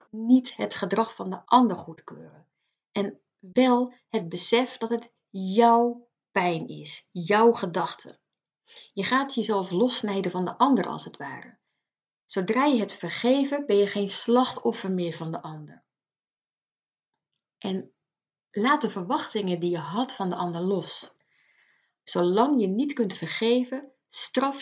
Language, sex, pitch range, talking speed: Dutch, female, 190-255 Hz, 140 wpm